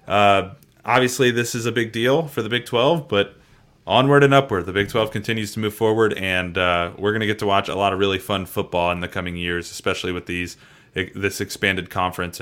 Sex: male